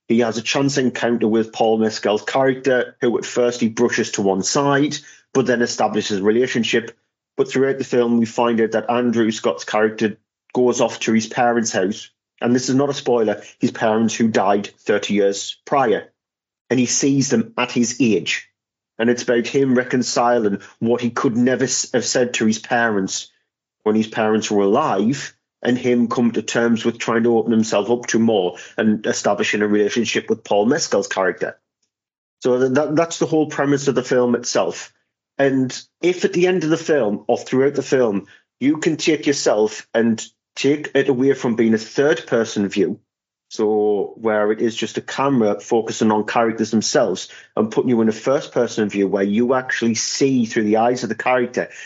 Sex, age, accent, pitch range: male, 30-49, British, 110-130 Hz